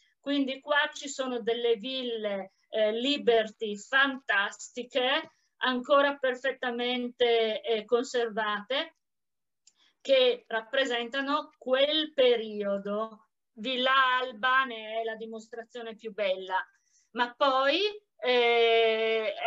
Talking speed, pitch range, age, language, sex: 85 wpm, 230-275 Hz, 50-69, Italian, female